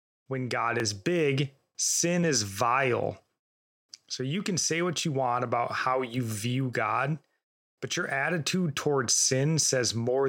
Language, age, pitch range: English, 30-49, 125-150 Hz